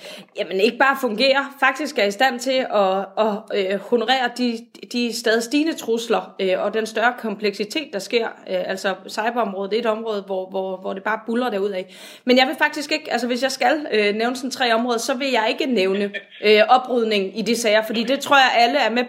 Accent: native